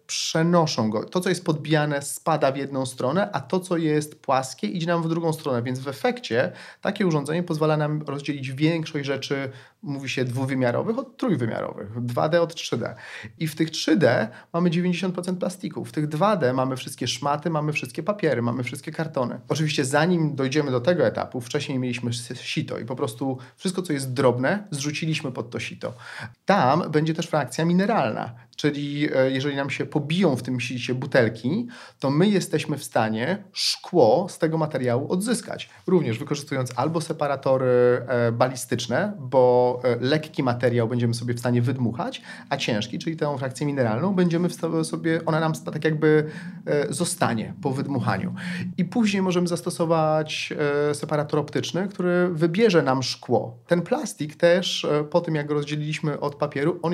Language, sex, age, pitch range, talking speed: Polish, male, 40-59, 130-170 Hz, 160 wpm